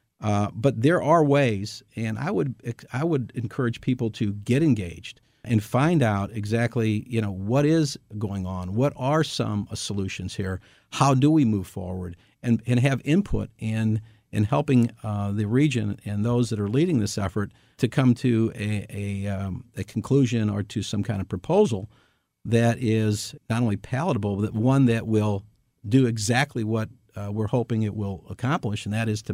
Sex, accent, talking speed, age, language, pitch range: male, American, 180 wpm, 50-69, English, 105-130 Hz